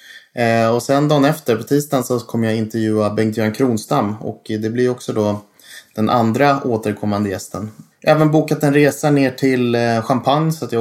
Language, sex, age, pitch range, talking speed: English, male, 20-39, 105-130 Hz, 185 wpm